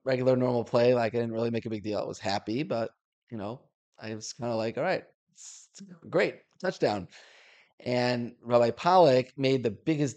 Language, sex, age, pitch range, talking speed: English, male, 20-39, 110-130 Hz, 200 wpm